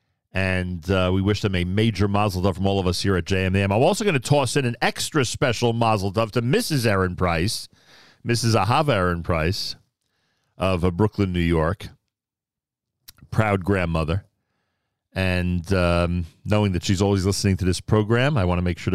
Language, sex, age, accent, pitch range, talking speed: English, male, 40-59, American, 90-120 Hz, 185 wpm